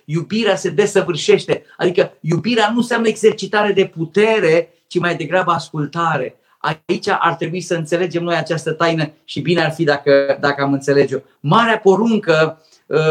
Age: 50-69